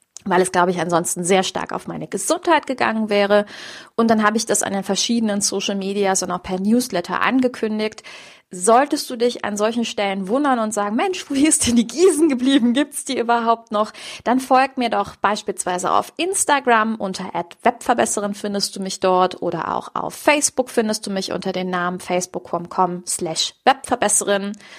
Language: German